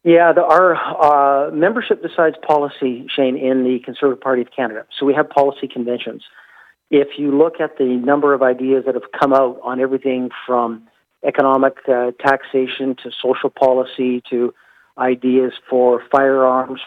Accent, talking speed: American, 155 wpm